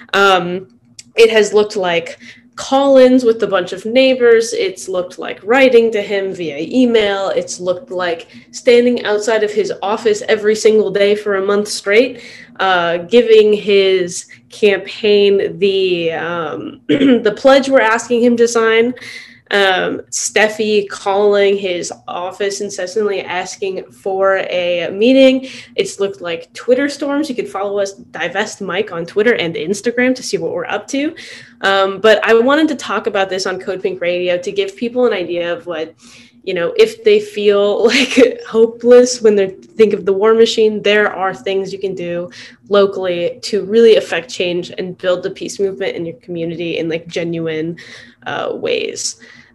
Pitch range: 180-235 Hz